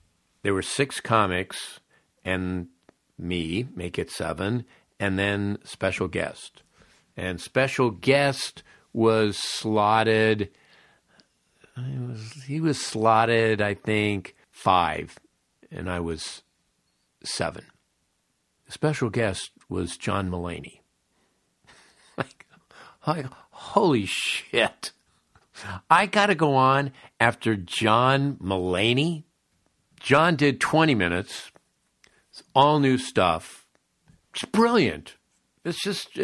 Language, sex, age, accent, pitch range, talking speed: English, male, 50-69, American, 95-135 Hz, 100 wpm